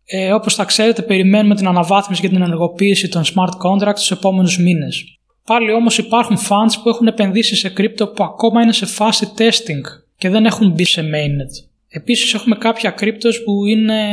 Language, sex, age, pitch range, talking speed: Greek, male, 20-39, 175-210 Hz, 180 wpm